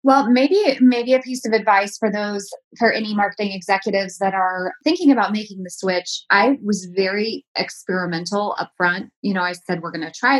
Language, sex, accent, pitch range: English, female, American, 180-205 Hz